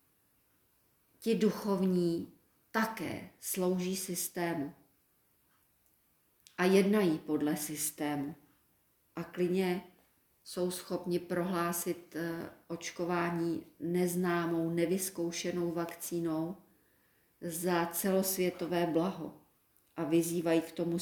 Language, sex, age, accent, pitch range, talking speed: Czech, female, 40-59, native, 170-195 Hz, 70 wpm